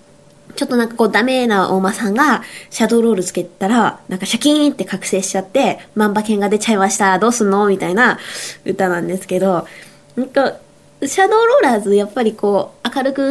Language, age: Japanese, 20-39